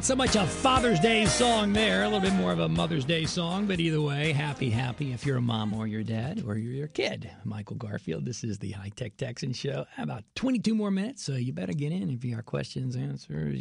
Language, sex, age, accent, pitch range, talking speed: English, male, 40-59, American, 125-175 Hz, 245 wpm